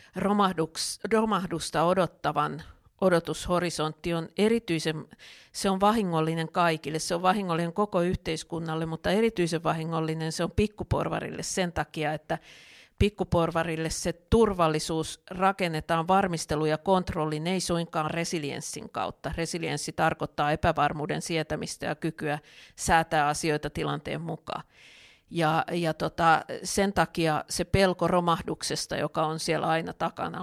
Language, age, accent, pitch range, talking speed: Finnish, 50-69, native, 160-185 Hz, 115 wpm